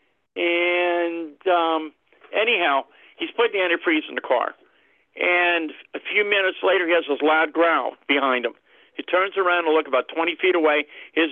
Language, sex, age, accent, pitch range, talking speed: English, male, 50-69, American, 150-175 Hz, 170 wpm